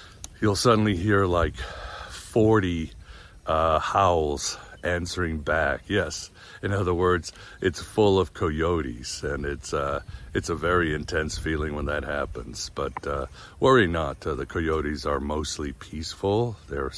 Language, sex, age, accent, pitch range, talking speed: English, male, 60-79, American, 80-100 Hz, 140 wpm